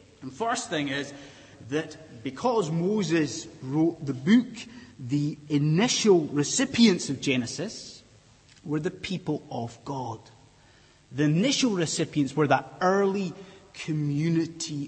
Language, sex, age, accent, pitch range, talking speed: English, male, 30-49, British, 130-195 Hz, 110 wpm